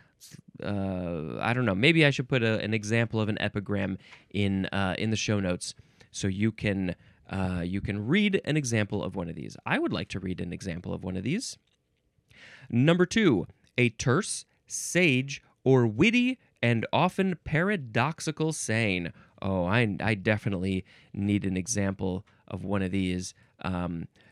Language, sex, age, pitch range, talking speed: English, male, 20-39, 100-150 Hz, 165 wpm